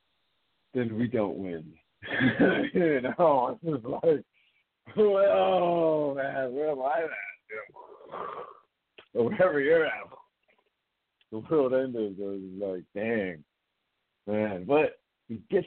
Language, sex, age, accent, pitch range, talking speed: English, male, 60-79, American, 120-200 Hz, 105 wpm